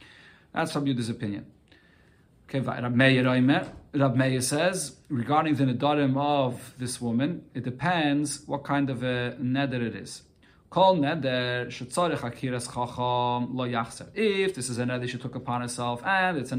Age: 30-49